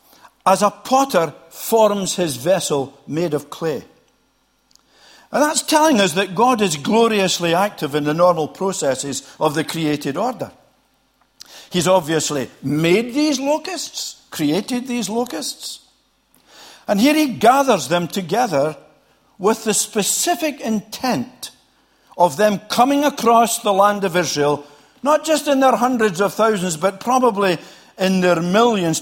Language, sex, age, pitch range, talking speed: English, male, 60-79, 175-260 Hz, 130 wpm